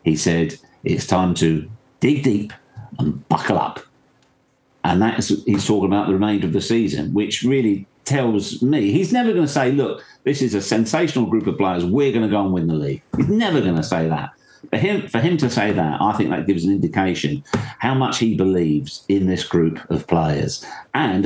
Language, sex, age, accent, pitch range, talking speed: English, male, 50-69, British, 85-115 Hz, 205 wpm